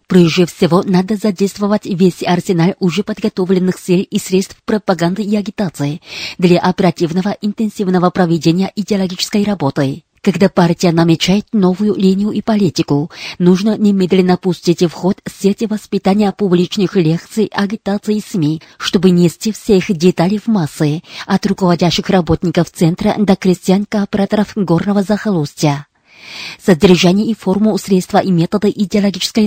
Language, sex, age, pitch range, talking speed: Russian, female, 30-49, 175-205 Hz, 125 wpm